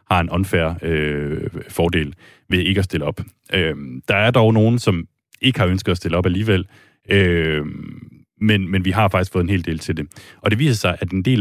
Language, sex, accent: Danish, male, native